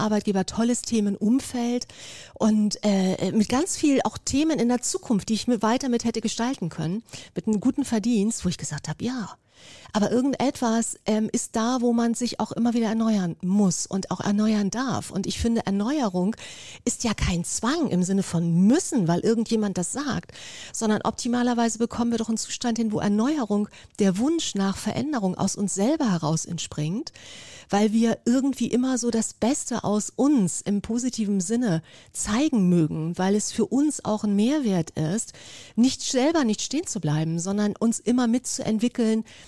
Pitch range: 195-240 Hz